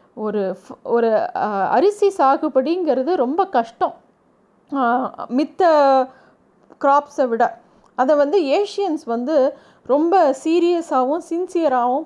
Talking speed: 80 wpm